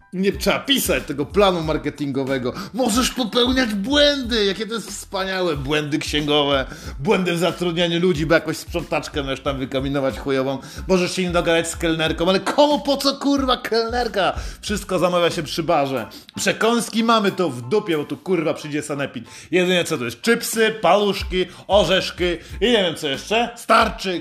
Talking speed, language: 165 wpm, Polish